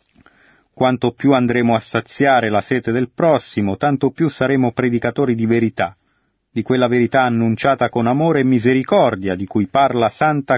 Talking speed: 155 wpm